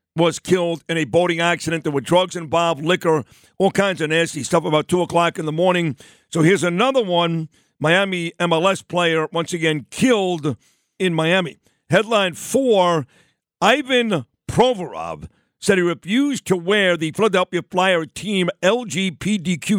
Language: English